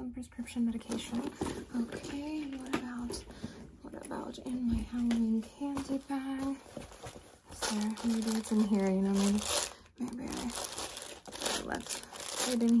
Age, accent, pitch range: 20-39, American, 215-250 Hz